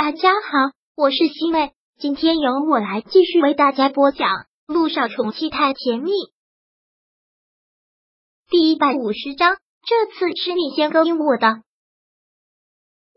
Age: 30-49